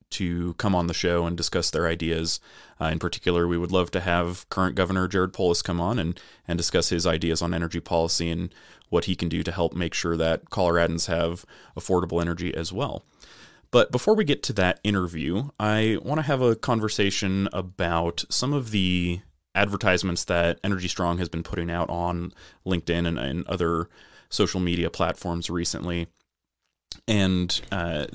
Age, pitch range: 30-49, 85-100 Hz